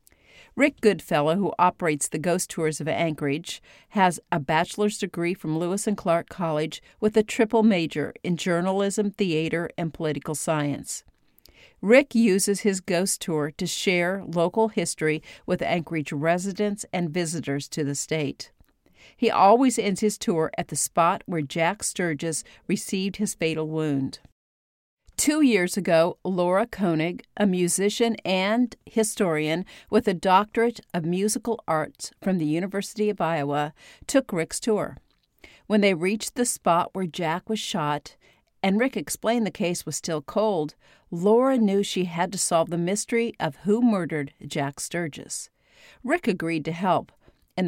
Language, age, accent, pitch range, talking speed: English, 50-69, American, 160-205 Hz, 150 wpm